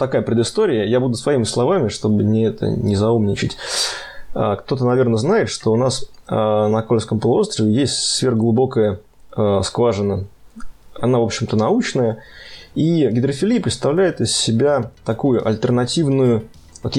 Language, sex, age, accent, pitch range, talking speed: Russian, male, 20-39, native, 105-125 Hz, 125 wpm